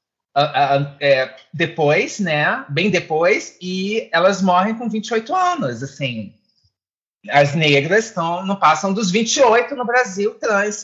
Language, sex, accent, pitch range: Portuguese, male, Brazilian, 155-220 Hz